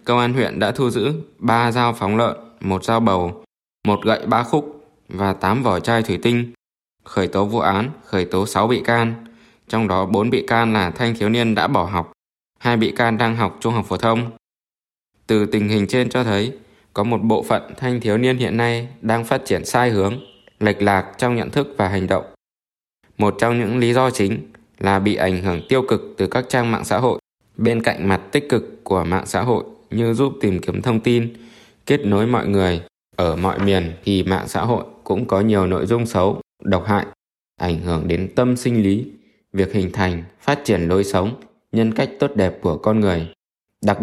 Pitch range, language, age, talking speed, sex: 95-120 Hz, Vietnamese, 20-39, 210 wpm, male